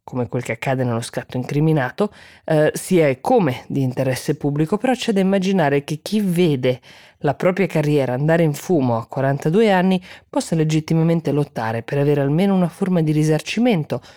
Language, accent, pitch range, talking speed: Italian, native, 140-180 Hz, 170 wpm